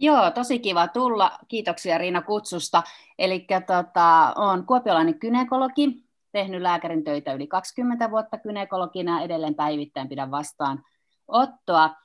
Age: 30-49